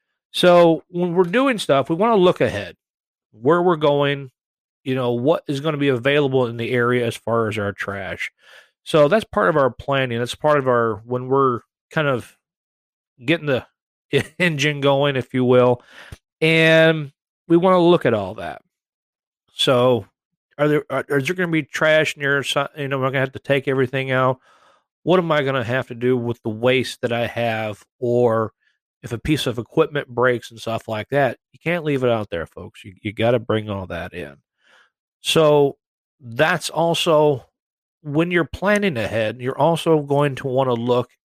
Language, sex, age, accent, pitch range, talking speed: English, male, 40-59, American, 120-155 Hz, 195 wpm